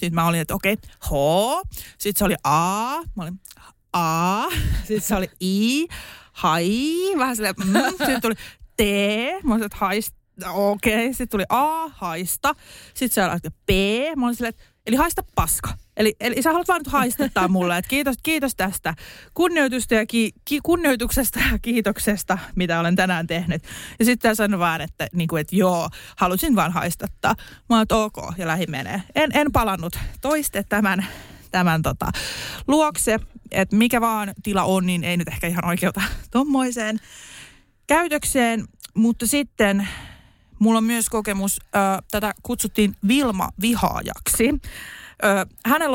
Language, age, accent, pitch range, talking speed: Finnish, 30-49, native, 185-250 Hz, 160 wpm